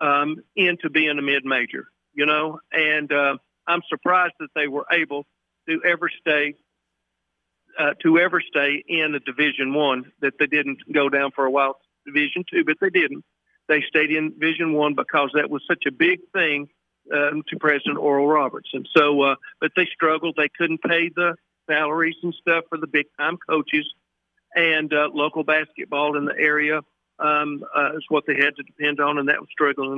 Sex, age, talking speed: male, 50-69, 190 wpm